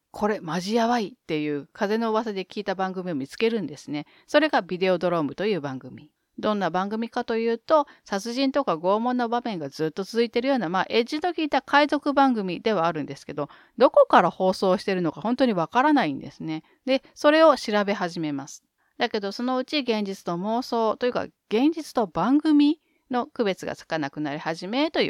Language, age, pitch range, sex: Japanese, 40-59, 175-270 Hz, female